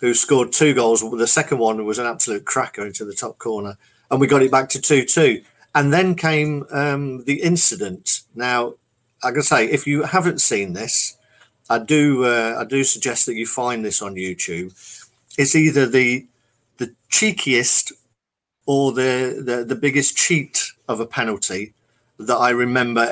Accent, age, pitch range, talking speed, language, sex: British, 50-69, 115-145 Hz, 175 wpm, English, male